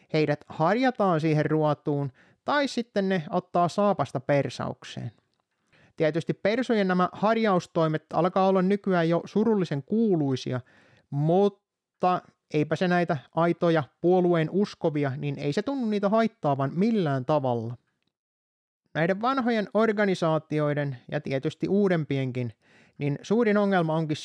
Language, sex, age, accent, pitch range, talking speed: Finnish, male, 30-49, native, 150-200 Hz, 115 wpm